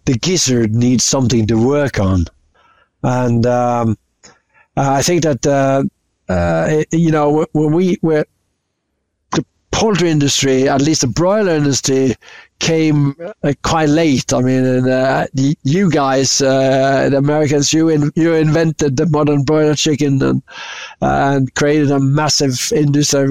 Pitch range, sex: 135-160 Hz, male